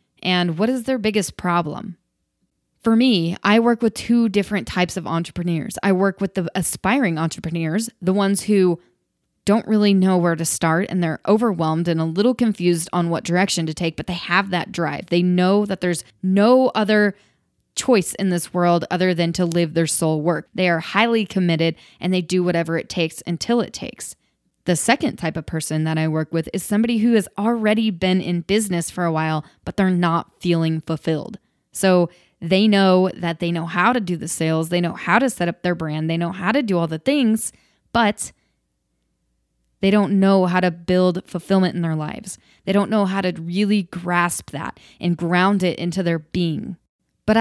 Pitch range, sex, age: 165-200 Hz, female, 20-39